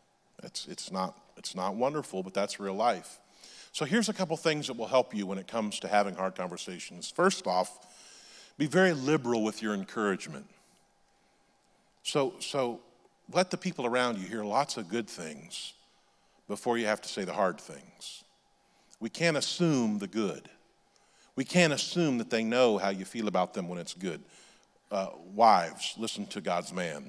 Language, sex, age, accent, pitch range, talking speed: English, male, 50-69, American, 100-135 Hz, 175 wpm